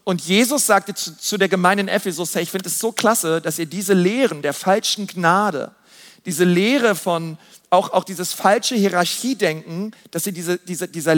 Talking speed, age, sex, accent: 190 wpm, 40-59, male, German